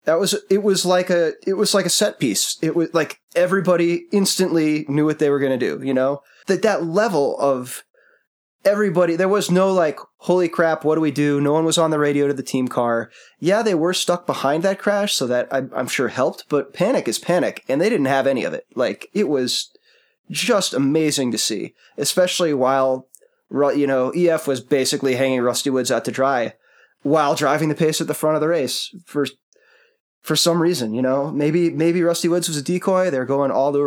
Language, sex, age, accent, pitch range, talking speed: English, male, 20-39, American, 135-180 Hz, 220 wpm